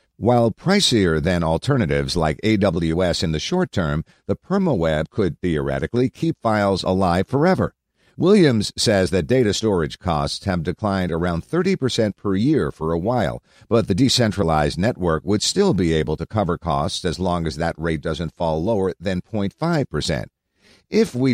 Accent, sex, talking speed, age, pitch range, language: American, male, 155 wpm, 50-69, 85-120 Hz, English